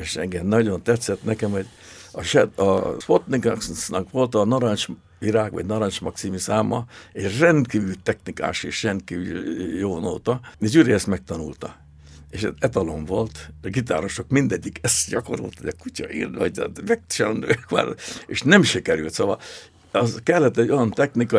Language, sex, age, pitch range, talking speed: Hungarian, male, 60-79, 95-120 Hz, 145 wpm